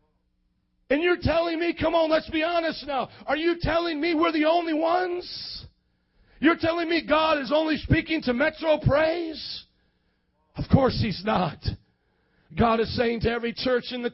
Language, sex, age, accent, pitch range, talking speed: English, male, 40-59, American, 225-290 Hz, 170 wpm